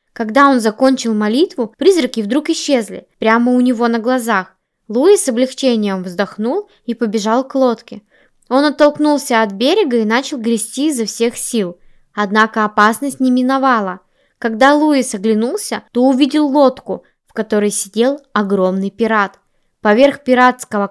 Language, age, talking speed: Russian, 20-39, 135 wpm